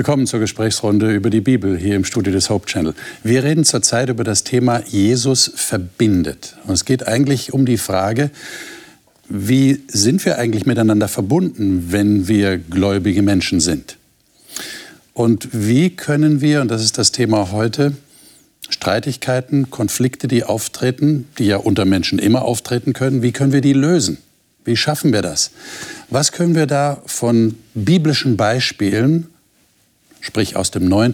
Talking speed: 150 wpm